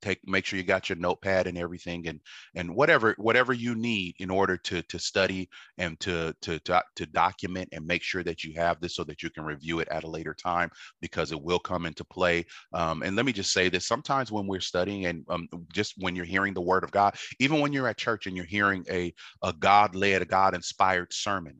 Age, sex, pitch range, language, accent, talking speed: 30-49, male, 90-105 Hz, English, American, 240 wpm